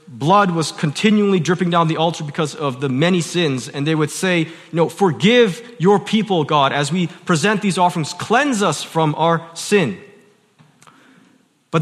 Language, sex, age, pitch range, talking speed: English, male, 30-49, 165-210 Hz, 155 wpm